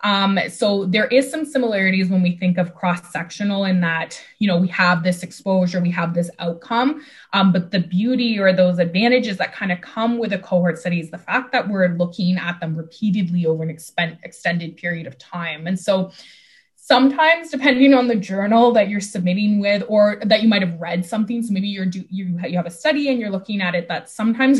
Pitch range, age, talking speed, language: 175-220 Hz, 20-39, 215 wpm, English